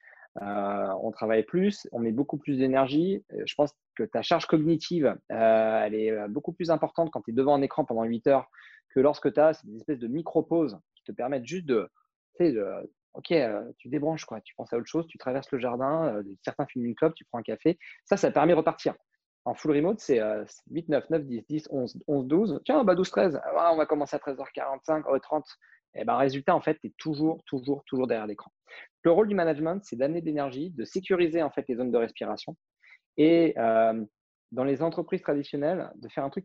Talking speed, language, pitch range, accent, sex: 220 wpm, French, 120-165 Hz, French, male